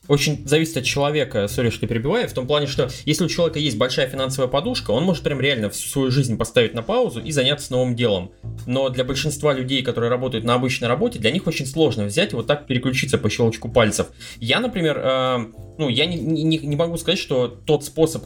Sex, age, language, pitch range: male, 20-39, Russian, 115-150 Hz